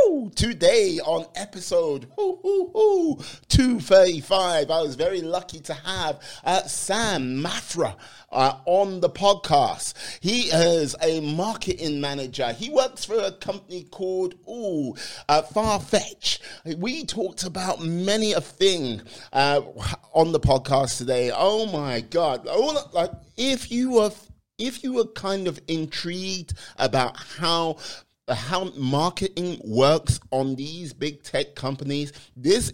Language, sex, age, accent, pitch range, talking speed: English, male, 30-49, British, 140-195 Hz, 125 wpm